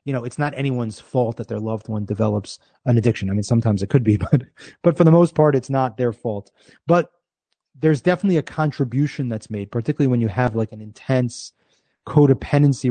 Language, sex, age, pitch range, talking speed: English, male, 30-49, 120-150 Hz, 205 wpm